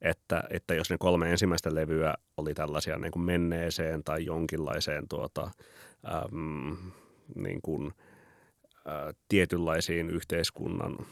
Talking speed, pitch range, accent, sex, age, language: 115 wpm, 75-85 Hz, native, male, 30-49, Finnish